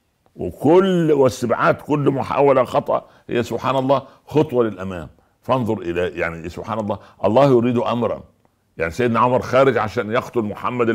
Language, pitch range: Arabic, 95-125 Hz